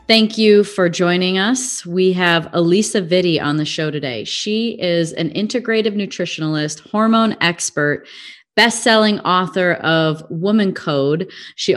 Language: English